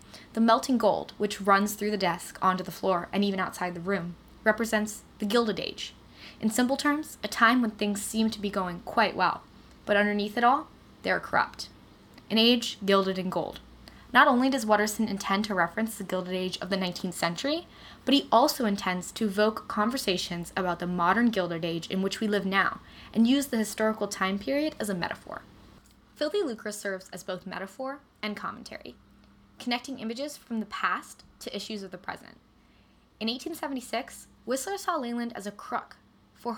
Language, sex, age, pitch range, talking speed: English, female, 10-29, 195-240 Hz, 185 wpm